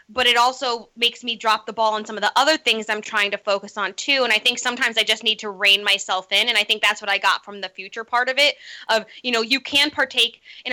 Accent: American